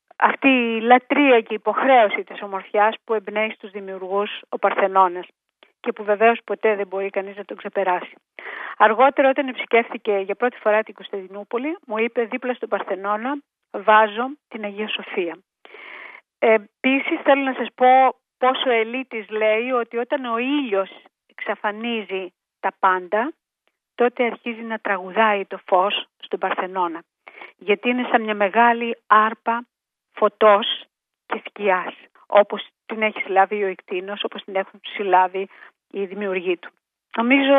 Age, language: 40-59, Greek